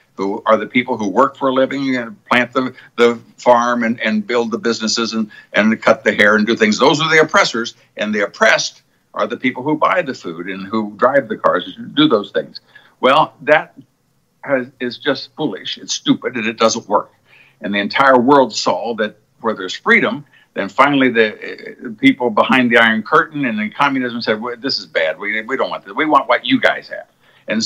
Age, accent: 60-79, American